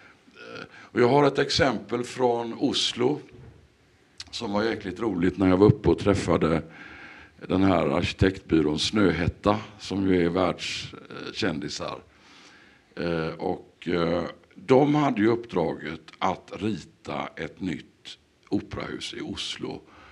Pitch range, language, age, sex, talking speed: 90-125 Hz, Swedish, 60-79, male, 110 wpm